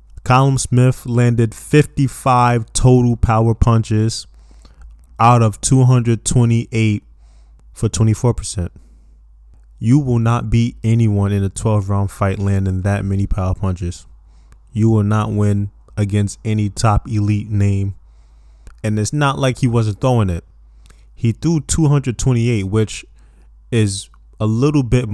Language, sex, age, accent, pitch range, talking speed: English, male, 20-39, American, 90-120 Hz, 125 wpm